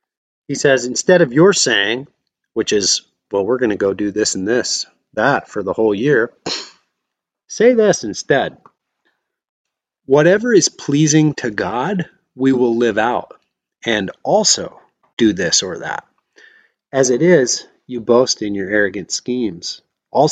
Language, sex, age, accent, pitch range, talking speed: English, male, 30-49, American, 115-155 Hz, 150 wpm